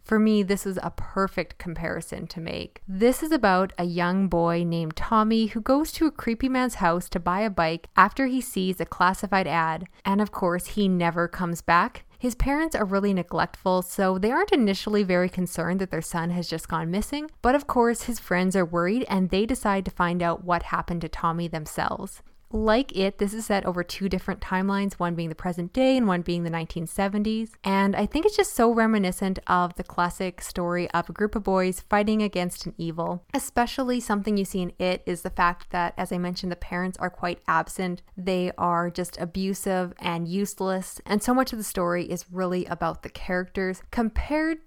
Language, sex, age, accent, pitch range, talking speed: English, female, 10-29, American, 175-215 Hz, 205 wpm